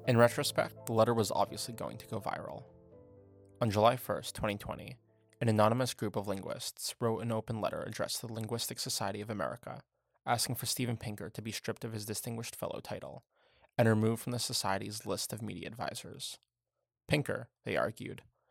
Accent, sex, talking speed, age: American, male, 175 wpm, 20-39